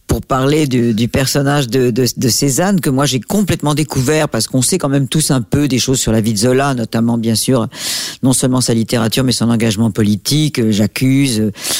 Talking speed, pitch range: 210 wpm, 115-145 Hz